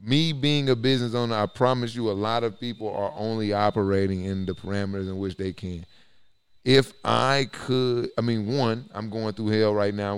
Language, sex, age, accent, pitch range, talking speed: English, male, 30-49, American, 100-115 Hz, 200 wpm